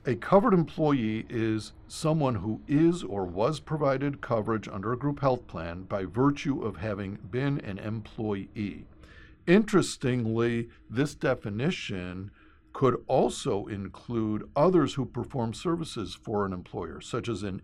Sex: male